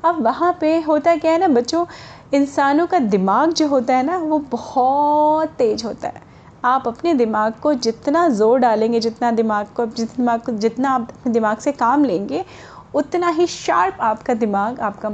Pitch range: 205-280 Hz